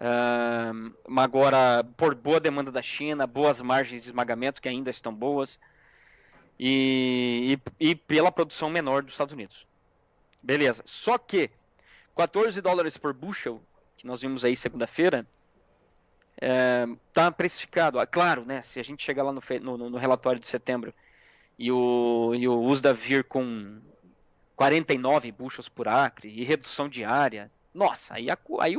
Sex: male